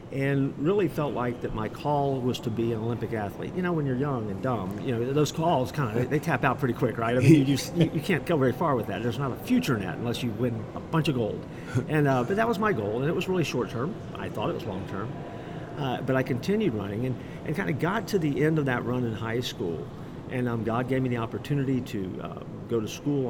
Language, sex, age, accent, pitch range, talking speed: English, male, 50-69, American, 115-140 Hz, 275 wpm